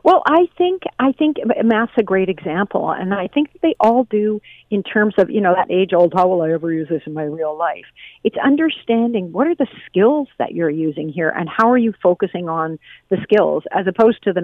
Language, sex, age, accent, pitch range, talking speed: English, female, 50-69, American, 165-220 Hz, 225 wpm